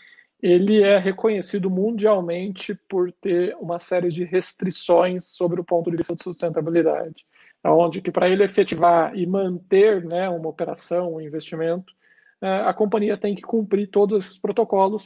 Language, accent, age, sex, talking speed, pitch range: Portuguese, Brazilian, 40-59, male, 145 wpm, 170-200 Hz